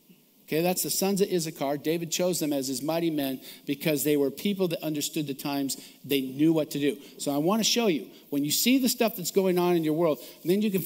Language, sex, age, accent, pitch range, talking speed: English, male, 50-69, American, 165-210 Hz, 255 wpm